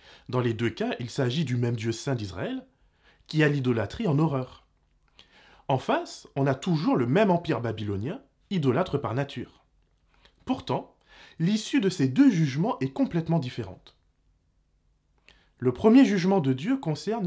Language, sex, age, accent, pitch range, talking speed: French, male, 20-39, French, 125-185 Hz, 150 wpm